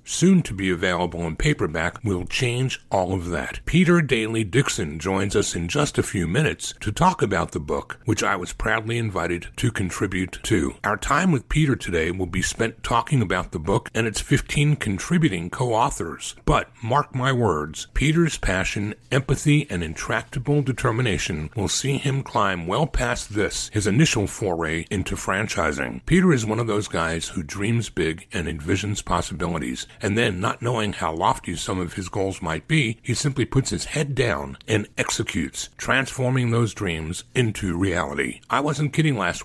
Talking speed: 175 wpm